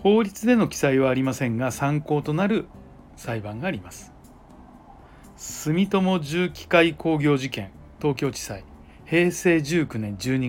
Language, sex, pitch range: Japanese, male, 115-175 Hz